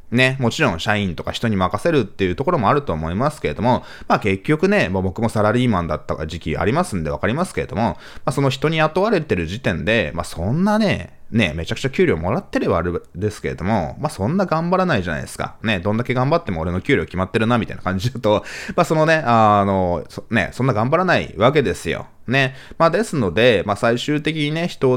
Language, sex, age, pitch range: Japanese, male, 20-39, 95-145 Hz